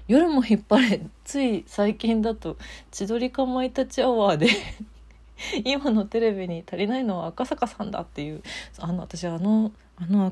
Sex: female